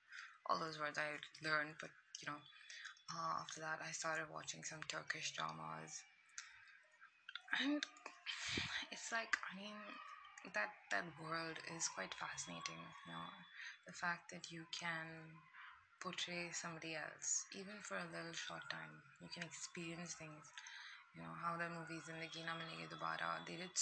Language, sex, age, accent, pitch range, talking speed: English, female, 20-39, Indian, 160-195 Hz, 145 wpm